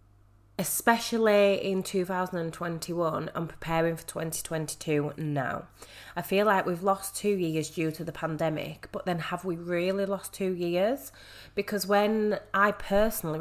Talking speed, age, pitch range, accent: 140 wpm, 20-39, 155-190 Hz, British